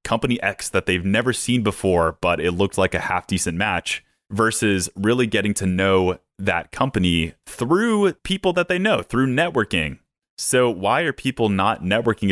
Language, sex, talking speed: English, male, 170 wpm